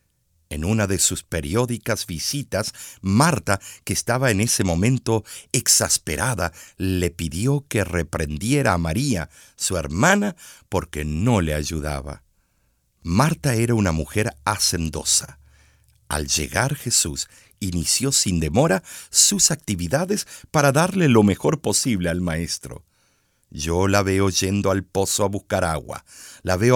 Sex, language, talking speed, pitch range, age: male, Spanish, 125 wpm, 85-120 Hz, 50-69